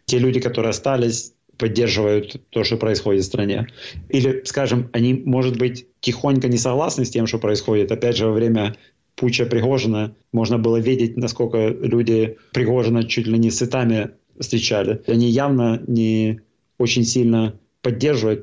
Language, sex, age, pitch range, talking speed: Russian, male, 30-49, 110-125 Hz, 145 wpm